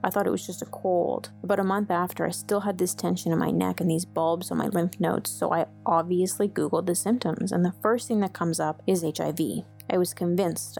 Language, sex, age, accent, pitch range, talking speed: English, female, 30-49, American, 175-215 Hz, 245 wpm